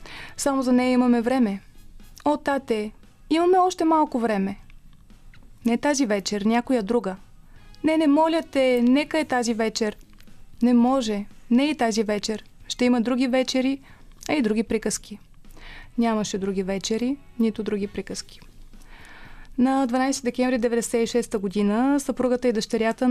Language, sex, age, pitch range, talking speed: Bulgarian, female, 20-39, 220-255 Hz, 140 wpm